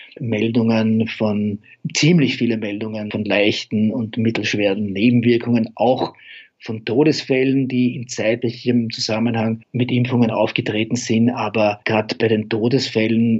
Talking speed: 115 wpm